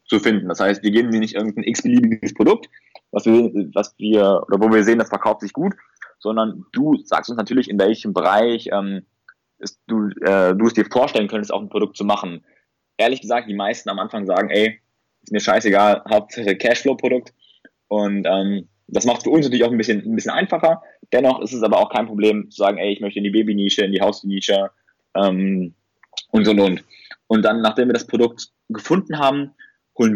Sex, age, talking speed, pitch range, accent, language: male, 20-39, 205 wpm, 100-120 Hz, German, German